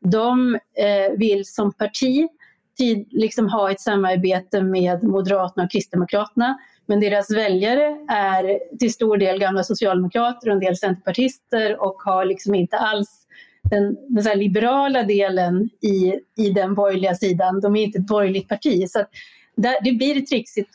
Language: Swedish